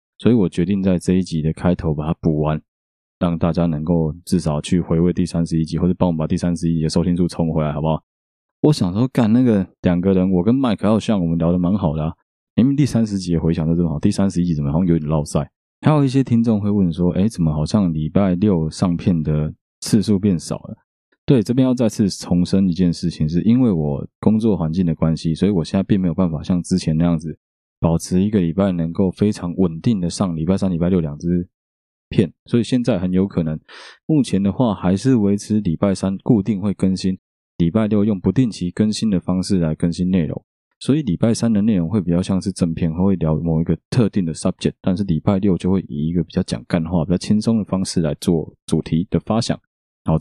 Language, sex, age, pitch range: Chinese, male, 20-39, 80-100 Hz